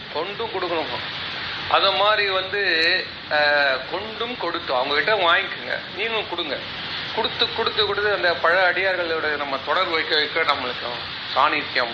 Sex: male